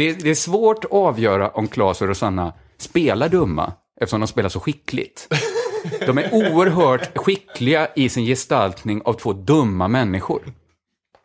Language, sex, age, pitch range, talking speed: Swedish, male, 30-49, 95-140 Hz, 155 wpm